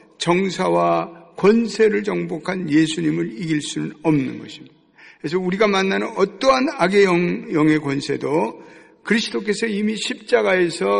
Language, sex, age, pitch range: Korean, male, 60-79, 160-225 Hz